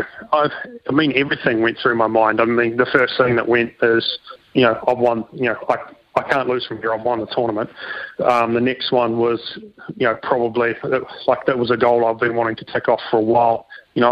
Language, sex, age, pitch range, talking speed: English, male, 20-39, 115-125 Hz, 230 wpm